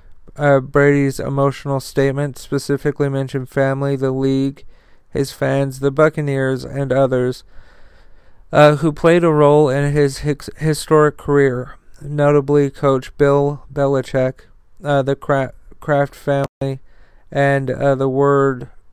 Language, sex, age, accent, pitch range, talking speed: English, male, 40-59, American, 135-155 Hz, 115 wpm